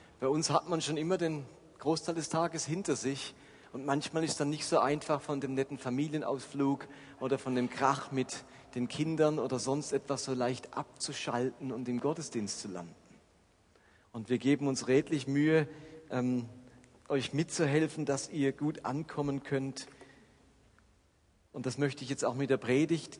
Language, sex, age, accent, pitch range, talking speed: German, male, 40-59, German, 115-145 Hz, 165 wpm